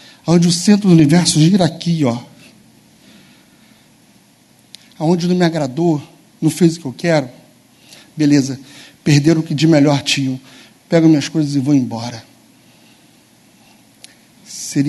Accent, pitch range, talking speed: Brazilian, 135-175 Hz, 130 wpm